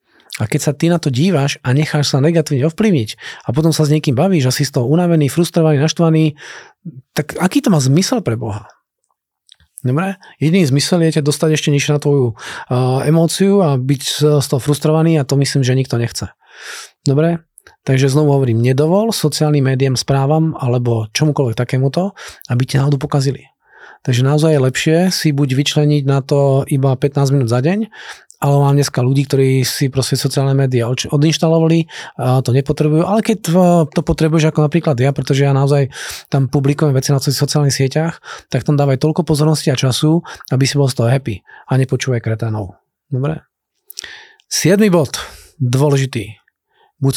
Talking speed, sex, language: 170 wpm, male, Czech